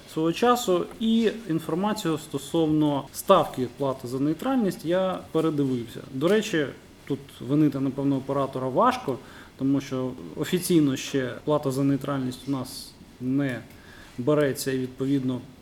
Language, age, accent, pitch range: Ukrainian, 20-39, native, 130-175 Hz